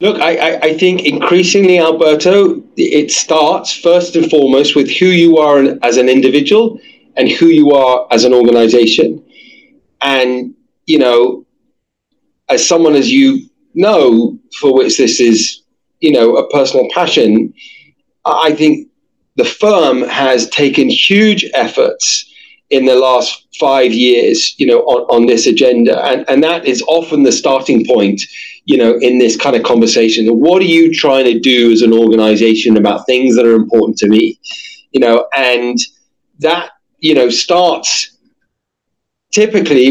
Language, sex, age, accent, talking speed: English, male, 40-59, British, 150 wpm